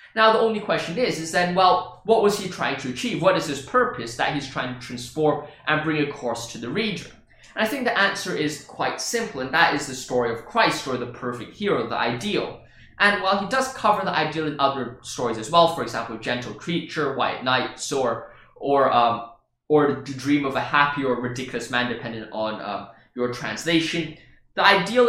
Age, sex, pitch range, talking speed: 20-39, male, 130-185 Hz, 210 wpm